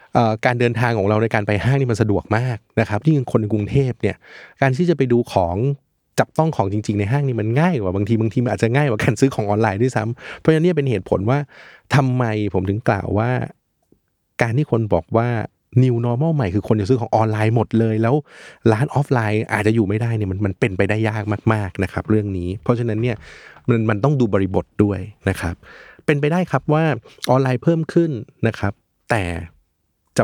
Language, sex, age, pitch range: Thai, male, 20-39, 100-130 Hz